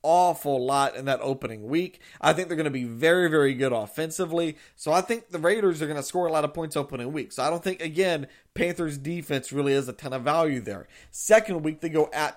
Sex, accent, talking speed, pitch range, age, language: male, American, 245 wpm, 145-175 Hz, 40-59, English